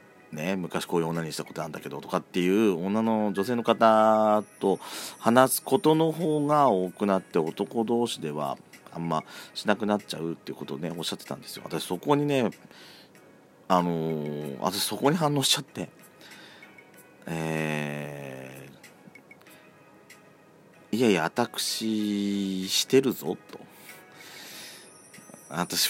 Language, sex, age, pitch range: Japanese, male, 40-59, 85-120 Hz